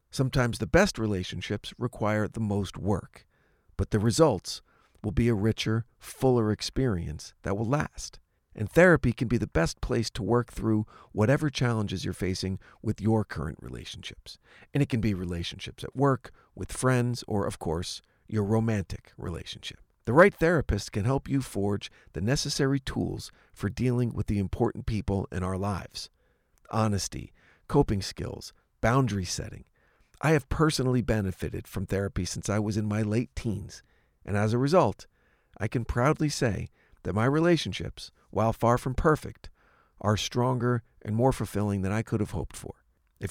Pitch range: 100-130 Hz